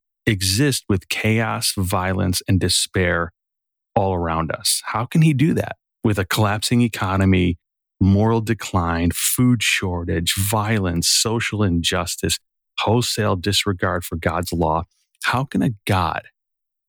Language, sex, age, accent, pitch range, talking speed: English, male, 30-49, American, 90-115 Hz, 120 wpm